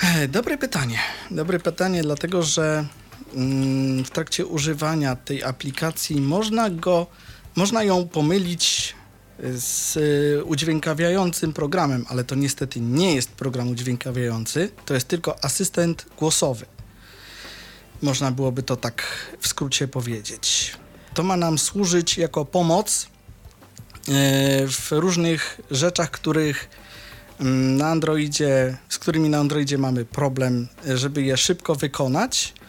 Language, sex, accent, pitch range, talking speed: Polish, male, native, 130-165 Hz, 110 wpm